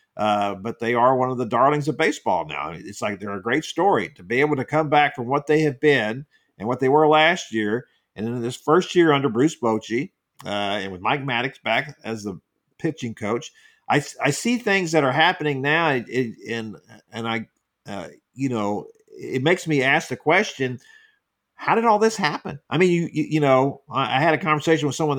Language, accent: English, American